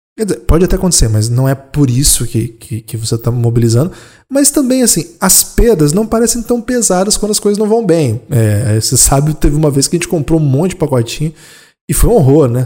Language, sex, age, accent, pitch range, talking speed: Portuguese, male, 20-39, Brazilian, 125-185 Hz, 230 wpm